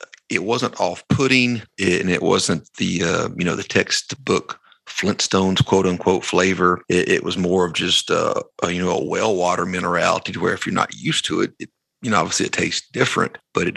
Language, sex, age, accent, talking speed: English, male, 40-59, American, 200 wpm